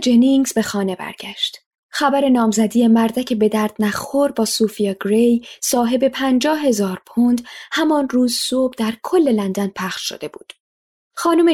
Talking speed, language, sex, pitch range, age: 145 wpm, Persian, female, 220-290 Hz, 10-29